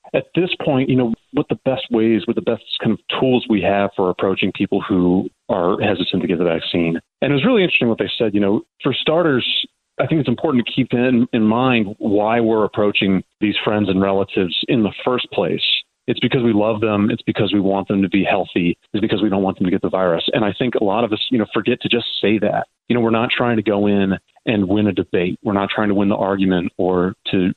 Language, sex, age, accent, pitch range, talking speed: English, male, 30-49, American, 95-125 Hz, 255 wpm